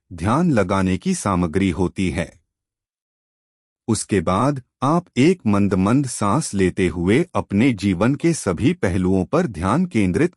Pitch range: 90-130 Hz